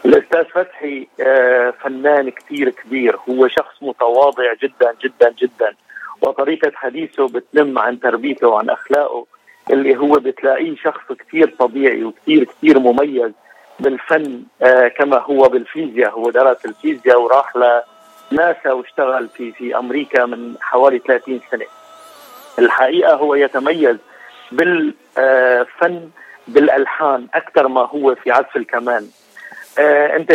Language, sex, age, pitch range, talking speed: Arabic, male, 50-69, 130-180 Hz, 110 wpm